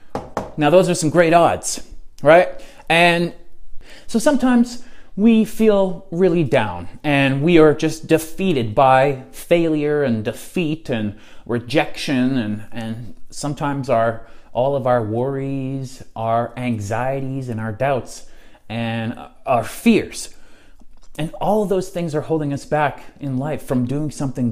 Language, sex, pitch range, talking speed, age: English, male, 115-155 Hz, 135 wpm, 30-49